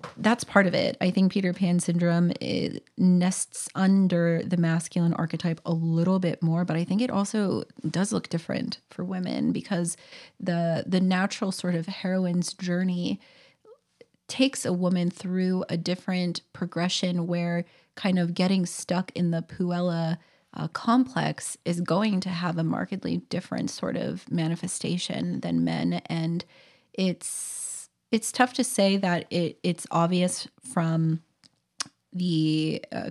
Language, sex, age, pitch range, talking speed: English, female, 30-49, 170-190 Hz, 145 wpm